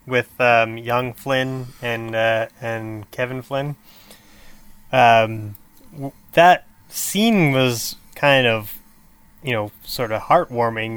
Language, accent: English, American